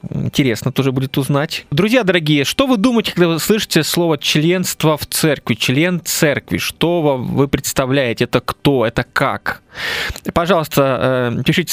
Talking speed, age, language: 140 wpm, 20-39, Russian